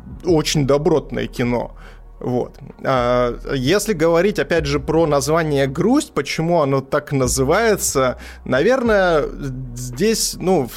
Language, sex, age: Russian, male, 20-39